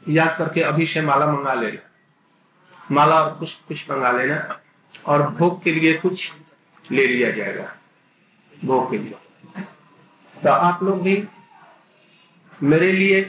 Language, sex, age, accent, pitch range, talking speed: Hindi, male, 50-69, native, 165-195 Hz, 130 wpm